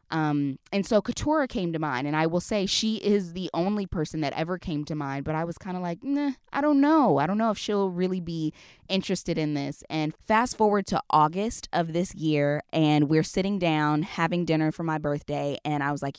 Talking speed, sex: 225 wpm, female